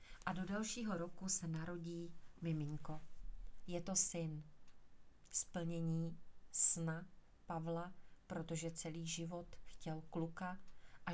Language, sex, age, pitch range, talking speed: Czech, female, 40-59, 160-175 Hz, 100 wpm